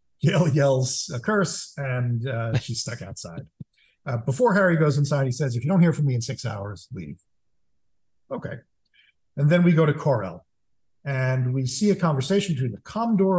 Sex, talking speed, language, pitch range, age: male, 190 wpm, English, 120-160 Hz, 50-69